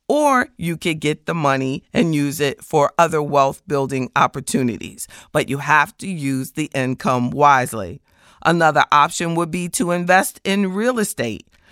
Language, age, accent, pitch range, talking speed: English, 40-59, American, 145-215 Hz, 160 wpm